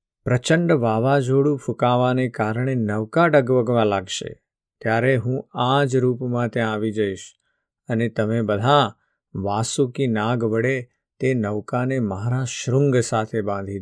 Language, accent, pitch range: Gujarati, native, 110-130 Hz